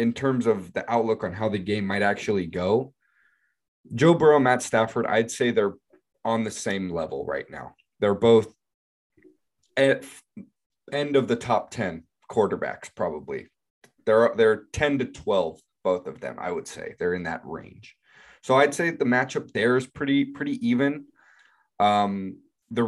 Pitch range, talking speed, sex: 100-120 Hz, 165 wpm, male